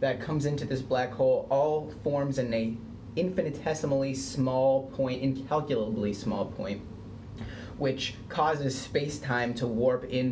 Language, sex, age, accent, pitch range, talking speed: English, male, 30-49, American, 110-135 Hz, 130 wpm